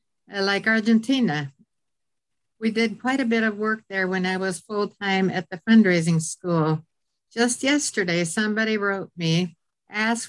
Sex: female